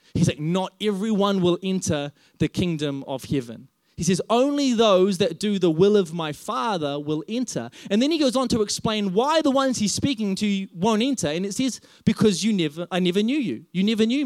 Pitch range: 160-210 Hz